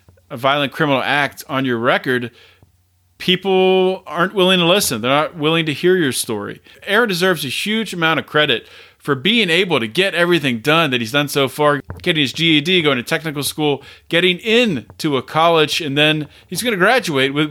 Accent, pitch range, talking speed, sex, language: American, 120-160 Hz, 190 wpm, male, English